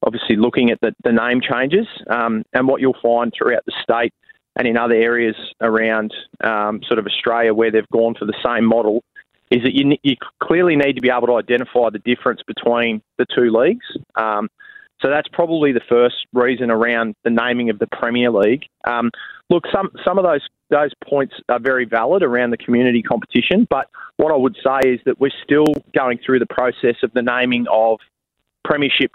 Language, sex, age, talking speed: English, male, 20-39, 195 wpm